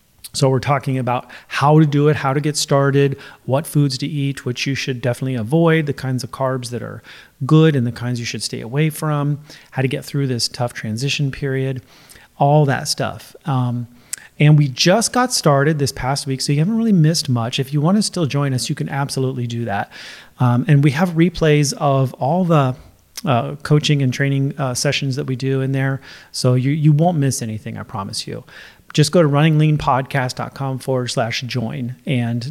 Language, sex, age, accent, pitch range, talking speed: English, male, 30-49, American, 125-150 Hz, 200 wpm